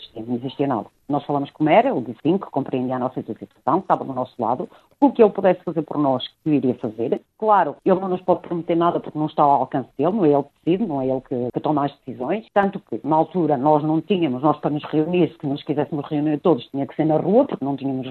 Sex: female